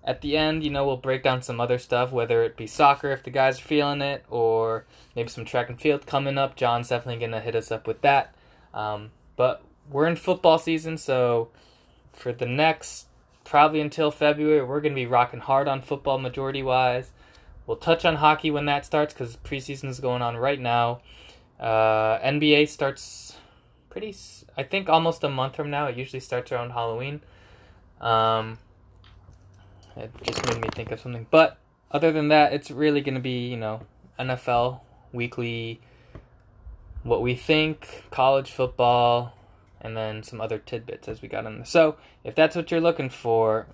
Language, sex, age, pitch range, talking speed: English, male, 20-39, 115-150 Hz, 180 wpm